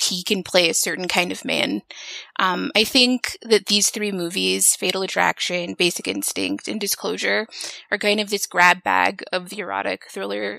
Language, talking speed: English, 175 wpm